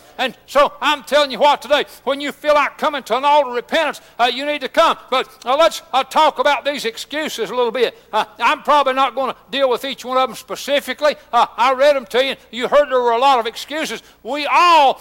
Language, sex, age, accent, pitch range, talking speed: English, male, 60-79, American, 250-305 Hz, 250 wpm